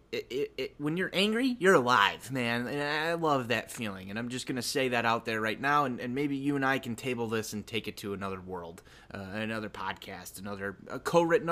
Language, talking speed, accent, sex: English, 240 wpm, American, male